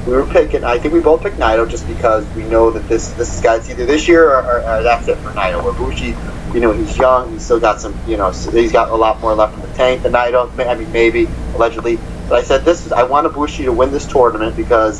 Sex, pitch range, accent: male, 115-145 Hz, American